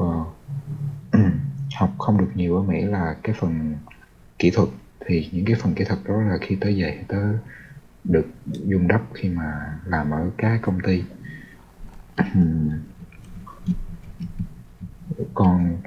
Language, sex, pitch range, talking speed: Vietnamese, male, 80-110 Hz, 135 wpm